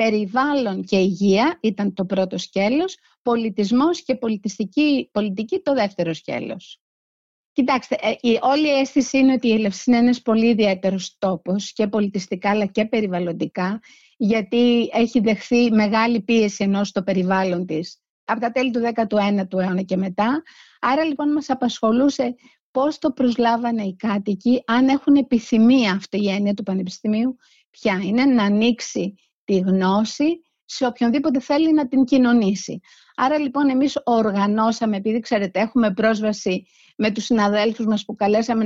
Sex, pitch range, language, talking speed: female, 200-260 Hz, Greek, 145 wpm